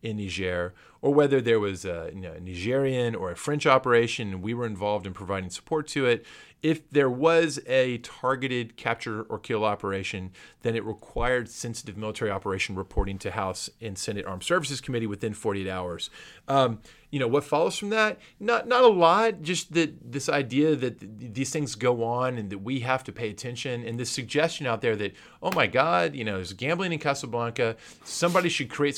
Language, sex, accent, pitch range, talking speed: English, male, American, 105-145 Hz, 190 wpm